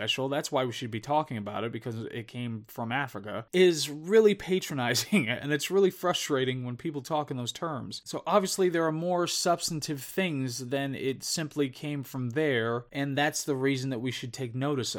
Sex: male